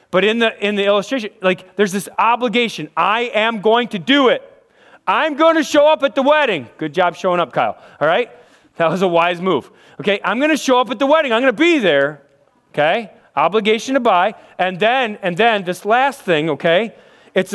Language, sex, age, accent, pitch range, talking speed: English, male, 30-49, American, 175-250 Hz, 215 wpm